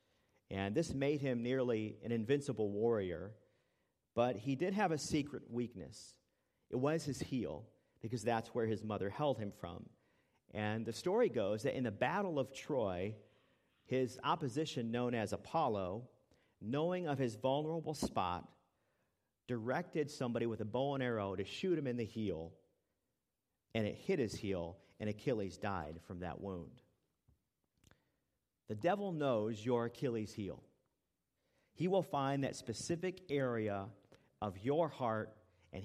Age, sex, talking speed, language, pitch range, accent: 50-69, male, 145 wpm, English, 100-135 Hz, American